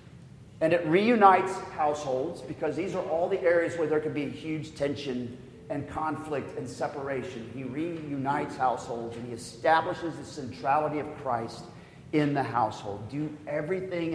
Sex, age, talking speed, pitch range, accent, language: male, 40-59, 150 wpm, 135-175 Hz, American, English